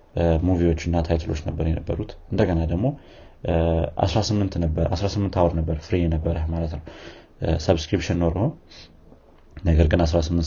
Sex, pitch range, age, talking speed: male, 80-85 Hz, 30-49, 120 wpm